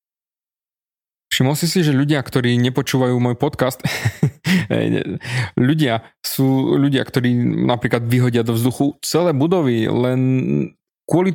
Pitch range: 130-175 Hz